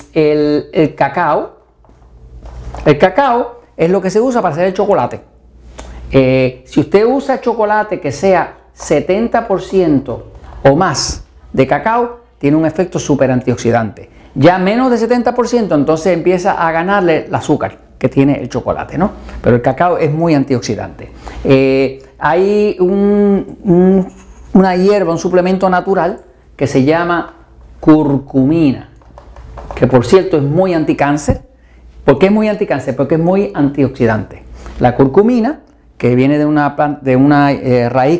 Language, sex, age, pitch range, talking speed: Spanish, male, 50-69, 110-180 Hz, 135 wpm